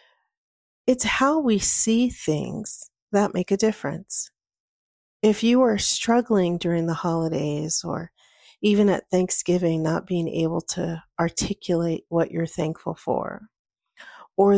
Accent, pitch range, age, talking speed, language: American, 170-210 Hz, 40-59, 125 wpm, English